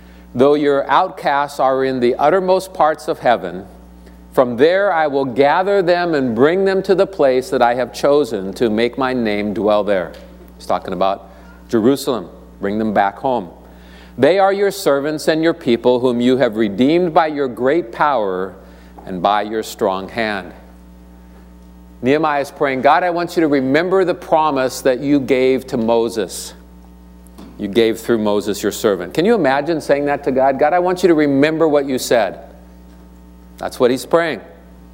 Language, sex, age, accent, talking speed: English, male, 50-69, American, 175 wpm